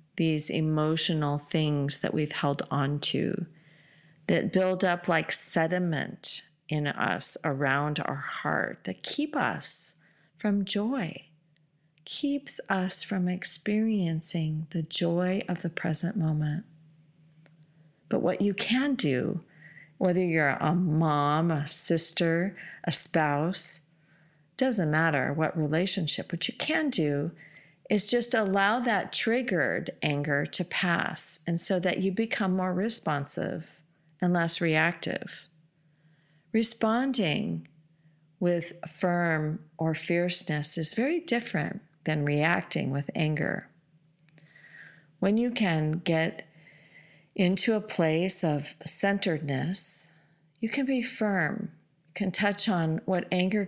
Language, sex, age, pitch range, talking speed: English, female, 40-59, 155-190 Hz, 115 wpm